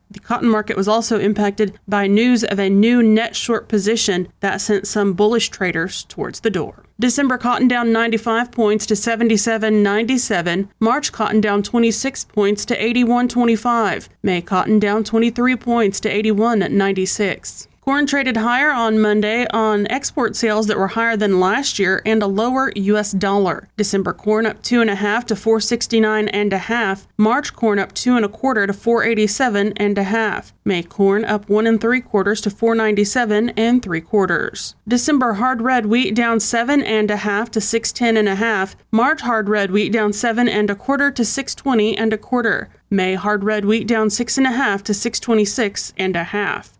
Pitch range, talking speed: 205-240 Hz, 180 wpm